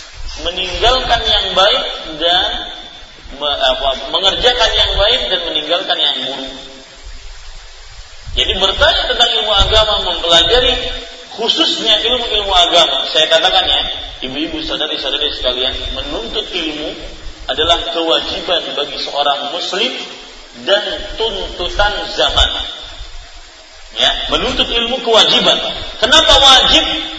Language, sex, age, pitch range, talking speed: Malay, male, 40-59, 175-270 Hz, 95 wpm